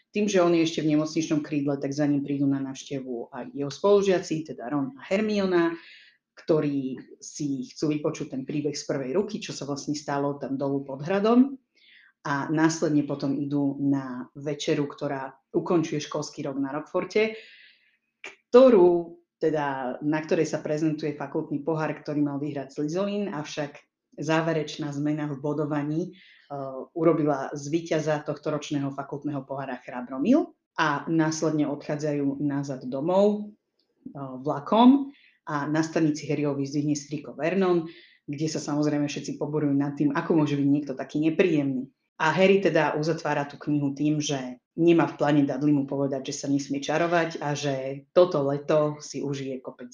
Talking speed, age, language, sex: 155 wpm, 30-49, Slovak, female